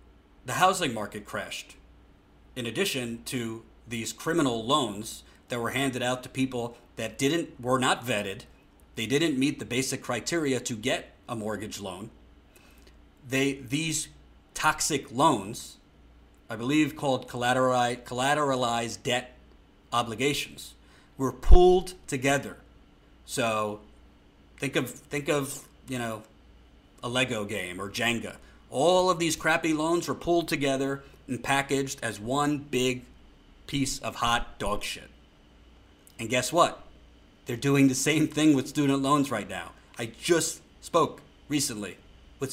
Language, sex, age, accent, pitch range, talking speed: English, male, 40-59, American, 105-140 Hz, 130 wpm